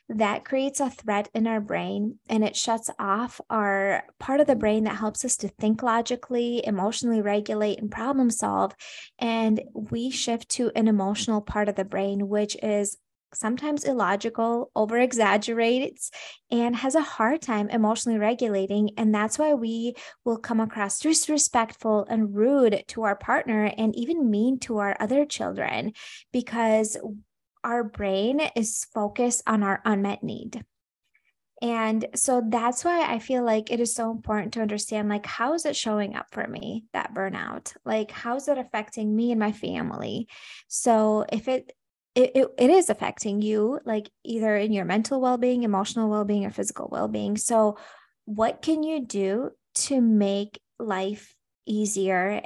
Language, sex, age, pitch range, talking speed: English, female, 20-39, 210-245 Hz, 160 wpm